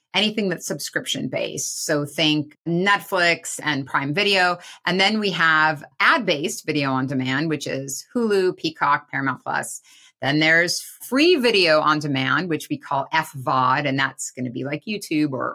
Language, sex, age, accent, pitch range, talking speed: English, female, 30-49, American, 140-175 Hz, 160 wpm